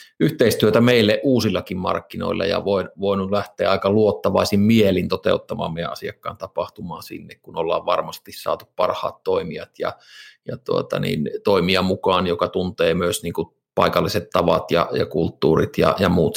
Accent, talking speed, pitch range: native, 145 wpm, 95-120 Hz